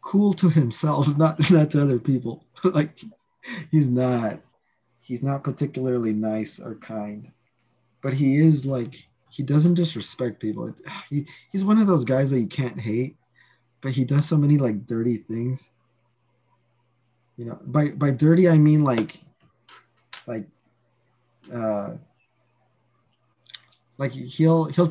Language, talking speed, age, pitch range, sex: English, 135 wpm, 20-39, 120-150 Hz, male